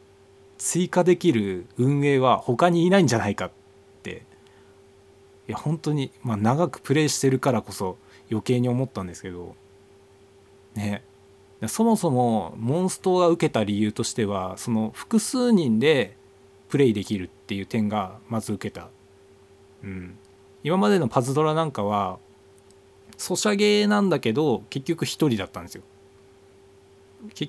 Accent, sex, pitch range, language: native, male, 100-145 Hz, Japanese